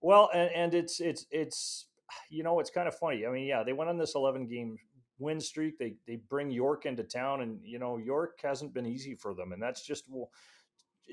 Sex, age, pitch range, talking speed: male, 40-59, 115-140 Hz, 225 wpm